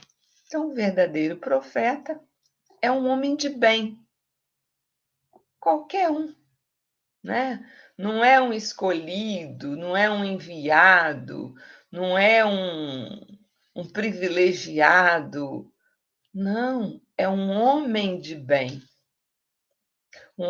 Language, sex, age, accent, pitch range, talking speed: Portuguese, female, 50-69, Brazilian, 175-260 Hz, 90 wpm